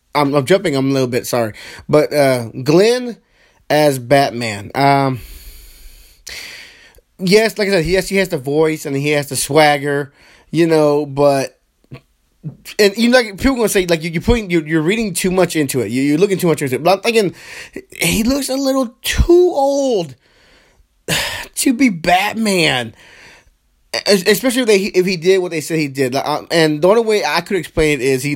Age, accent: 20-39, American